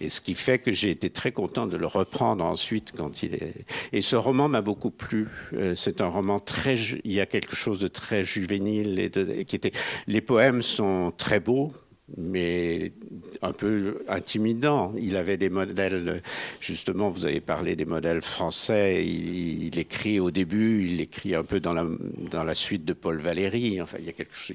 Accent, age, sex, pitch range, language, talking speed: French, 60-79, male, 100-120 Hz, French, 195 wpm